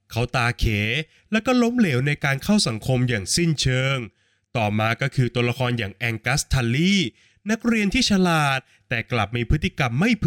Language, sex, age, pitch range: Thai, male, 20-39, 120-170 Hz